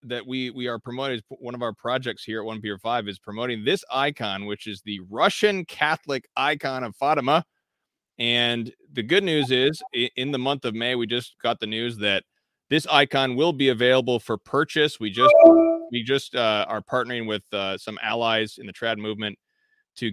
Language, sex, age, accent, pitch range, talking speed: English, male, 30-49, American, 110-140 Hz, 195 wpm